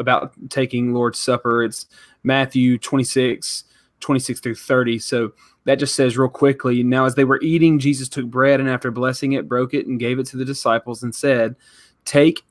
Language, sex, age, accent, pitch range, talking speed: English, male, 20-39, American, 120-135 Hz, 185 wpm